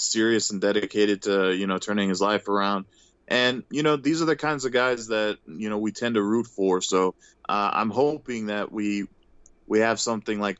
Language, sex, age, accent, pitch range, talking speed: English, male, 20-39, American, 100-115 Hz, 210 wpm